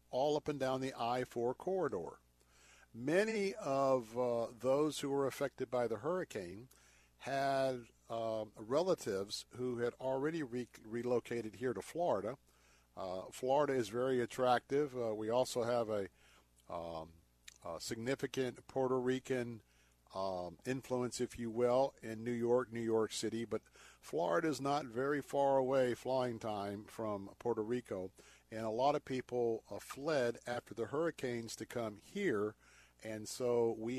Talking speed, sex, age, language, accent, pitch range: 145 wpm, male, 50-69, English, American, 105-130 Hz